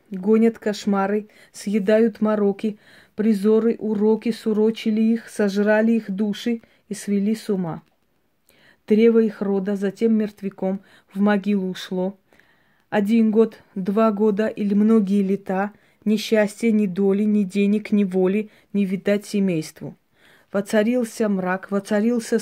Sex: female